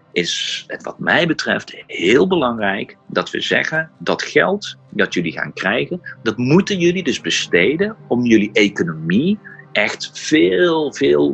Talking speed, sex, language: 145 wpm, male, Dutch